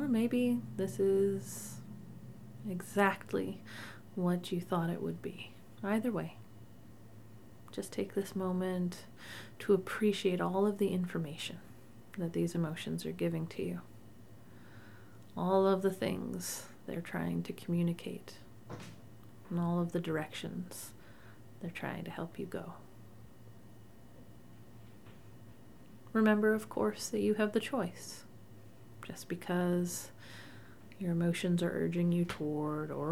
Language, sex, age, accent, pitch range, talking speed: English, female, 30-49, American, 110-185 Hz, 120 wpm